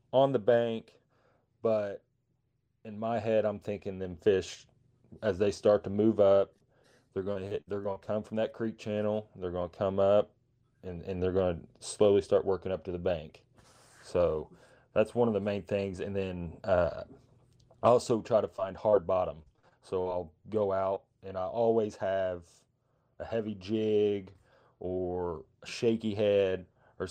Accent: American